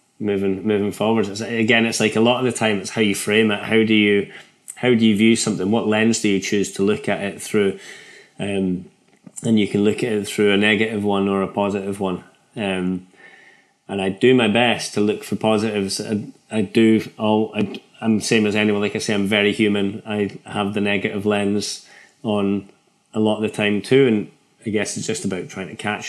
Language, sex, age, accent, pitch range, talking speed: English, male, 20-39, British, 95-105 Hz, 220 wpm